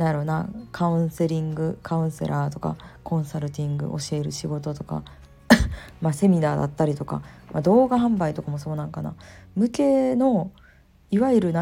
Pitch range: 150-205 Hz